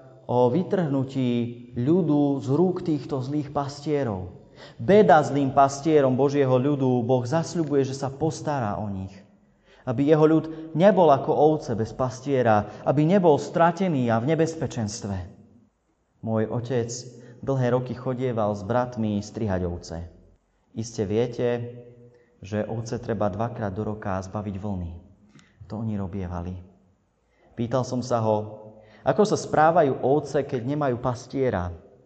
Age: 30-49